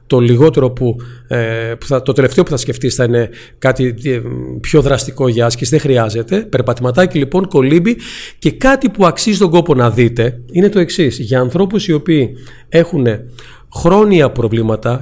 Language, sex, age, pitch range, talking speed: Greek, male, 40-59, 120-170 Hz, 150 wpm